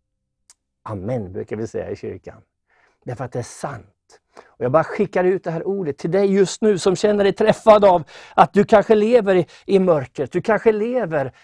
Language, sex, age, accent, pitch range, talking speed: English, male, 50-69, Swedish, 135-190 Hz, 210 wpm